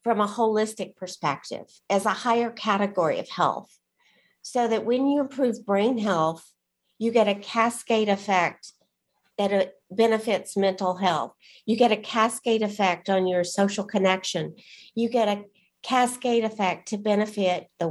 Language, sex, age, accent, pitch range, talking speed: English, female, 50-69, American, 185-225 Hz, 145 wpm